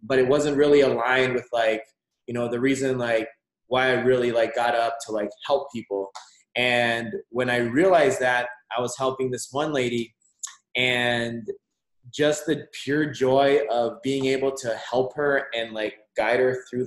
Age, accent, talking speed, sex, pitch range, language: 20-39, American, 175 wpm, male, 120-145 Hz, English